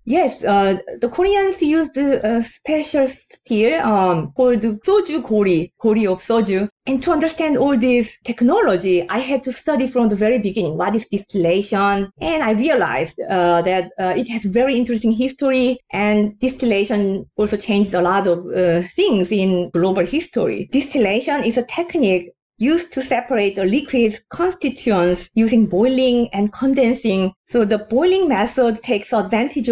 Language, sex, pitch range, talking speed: English, female, 190-255 Hz, 150 wpm